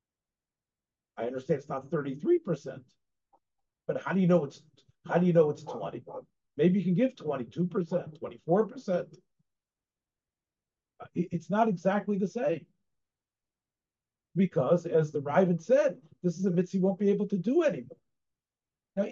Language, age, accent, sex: English, 50-69, American, male